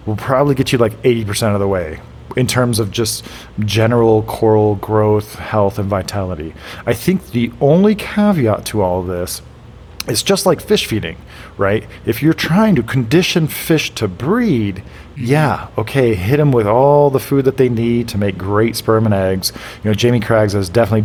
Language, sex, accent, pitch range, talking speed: English, male, American, 100-125 Hz, 185 wpm